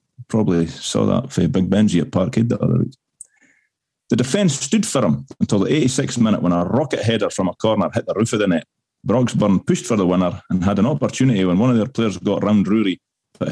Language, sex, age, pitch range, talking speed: English, male, 30-49, 95-130 Hz, 225 wpm